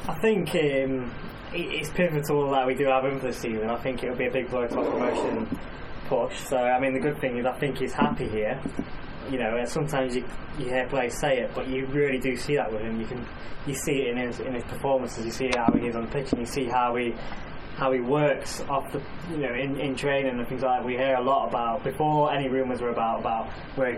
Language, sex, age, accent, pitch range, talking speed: English, male, 10-29, British, 120-135 Hz, 260 wpm